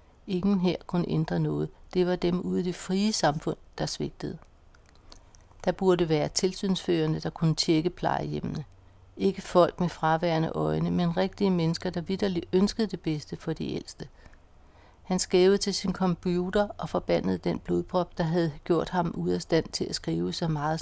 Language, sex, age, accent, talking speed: Danish, female, 60-79, native, 175 wpm